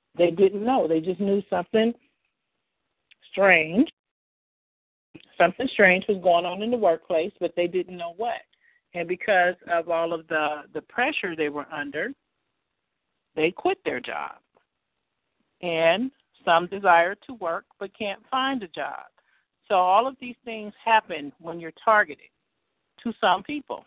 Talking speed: 145 wpm